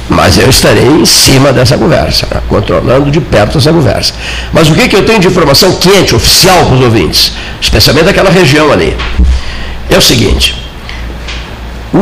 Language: Portuguese